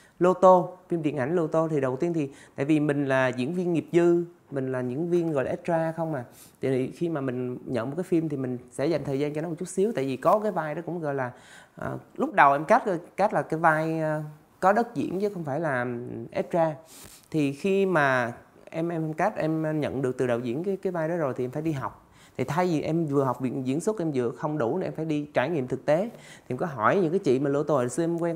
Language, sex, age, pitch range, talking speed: Vietnamese, male, 20-39, 135-180 Hz, 275 wpm